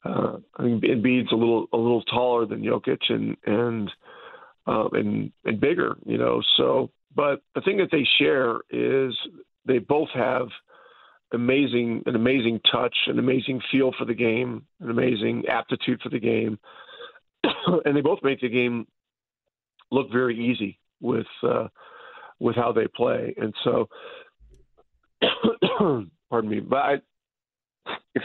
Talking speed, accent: 145 wpm, American